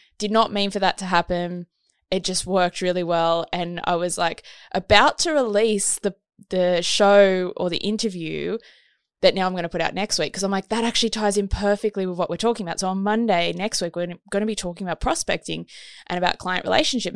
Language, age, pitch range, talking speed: English, 20-39, 180-225 Hz, 220 wpm